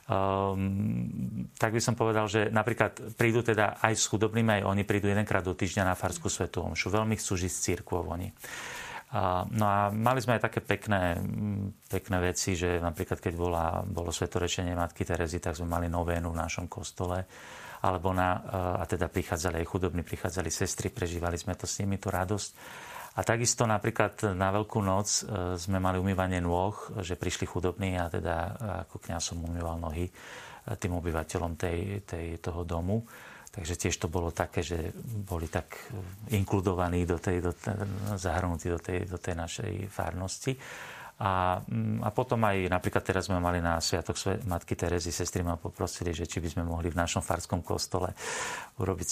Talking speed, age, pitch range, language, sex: 170 wpm, 40-59, 85-105 Hz, Slovak, male